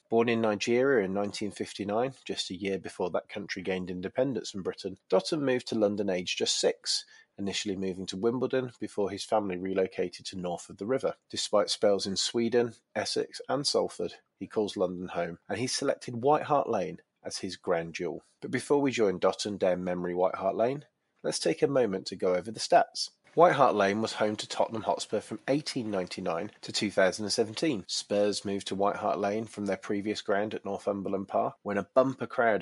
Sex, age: male, 30-49